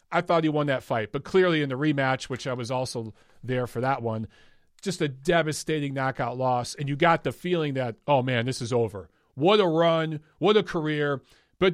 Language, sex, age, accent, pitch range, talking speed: English, male, 40-59, American, 130-180 Hz, 215 wpm